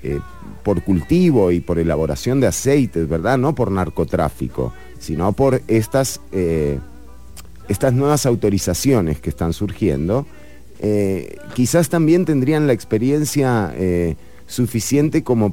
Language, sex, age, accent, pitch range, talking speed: English, male, 40-59, Argentinian, 85-125 Hz, 115 wpm